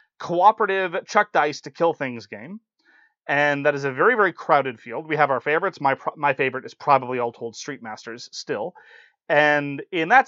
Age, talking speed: 30-49, 195 wpm